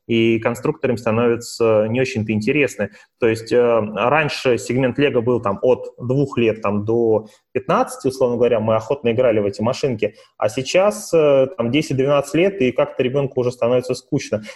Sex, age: male, 20-39